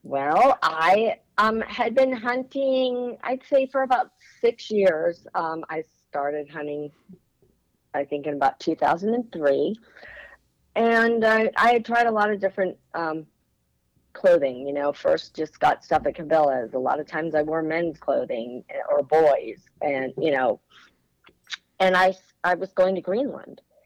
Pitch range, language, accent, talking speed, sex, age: 155-225 Hz, English, American, 150 wpm, female, 40-59